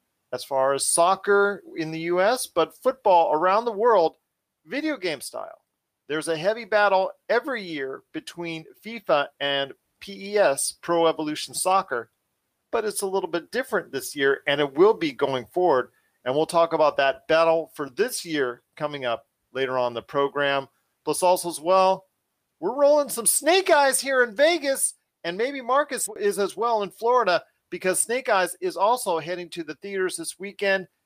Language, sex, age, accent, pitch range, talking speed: English, male, 40-59, American, 165-235 Hz, 170 wpm